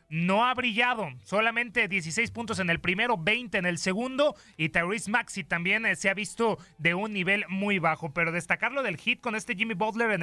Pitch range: 175-225 Hz